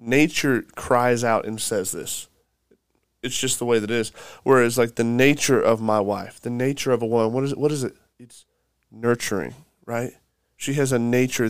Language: English